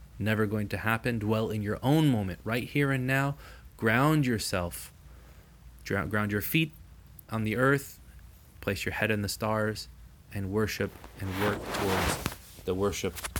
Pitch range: 90-110 Hz